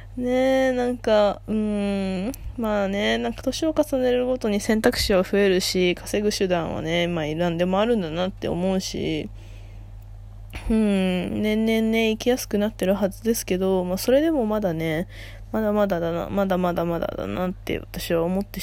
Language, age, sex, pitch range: Japanese, 20-39, female, 155-210 Hz